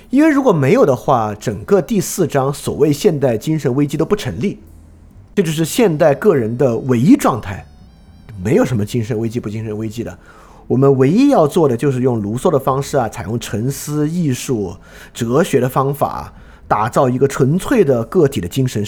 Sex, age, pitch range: male, 30-49, 110-165 Hz